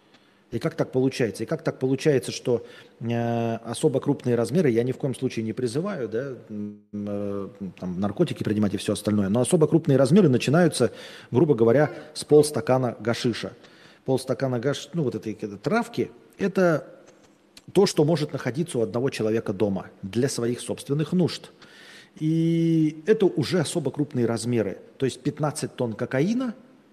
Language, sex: Russian, male